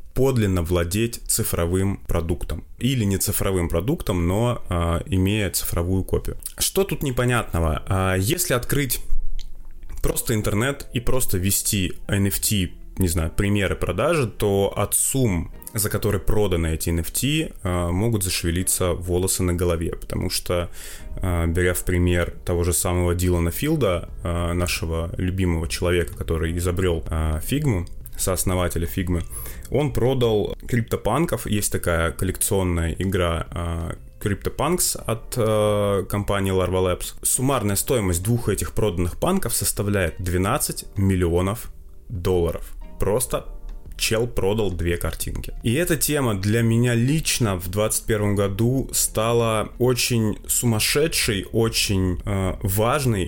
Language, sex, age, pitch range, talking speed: Russian, male, 20-39, 85-115 Hz, 115 wpm